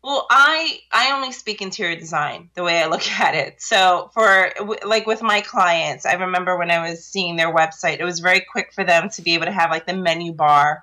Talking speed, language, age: 235 wpm, English, 30-49